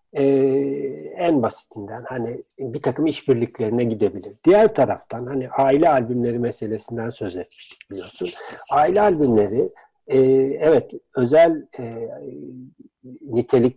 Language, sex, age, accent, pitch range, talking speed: Turkish, male, 60-79, native, 120-160 Hz, 105 wpm